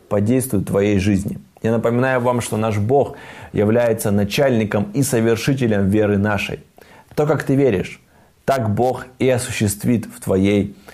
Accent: native